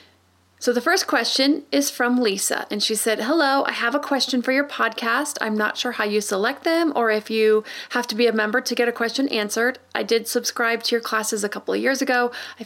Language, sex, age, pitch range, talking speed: English, female, 30-49, 215-260 Hz, 235 wpm